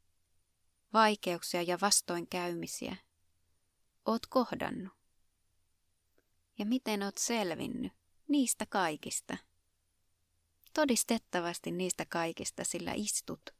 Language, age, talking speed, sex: Finnish, 30-49, 70 wpm, female